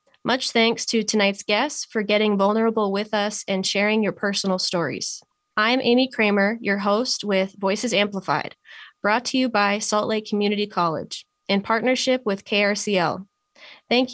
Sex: female